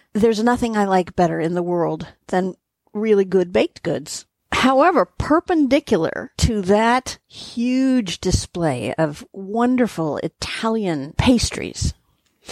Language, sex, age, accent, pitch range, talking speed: English, female, 50-69, American, 180-260 Hz, 110 wpm